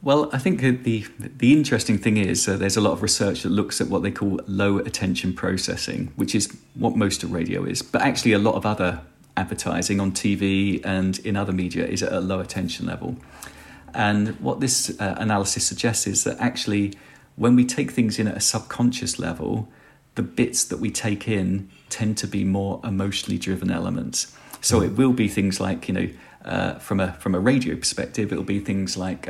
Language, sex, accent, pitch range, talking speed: Danish, male, British, 95-115 Hz, 205 wpm